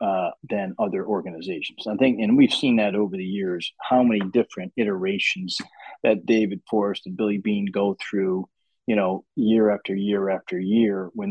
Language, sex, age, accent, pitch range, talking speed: English, male, 40-59, American, 95-110 Hz, 175 wpm